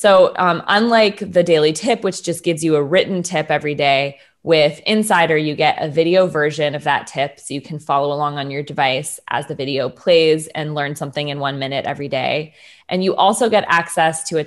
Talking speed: 215 wpm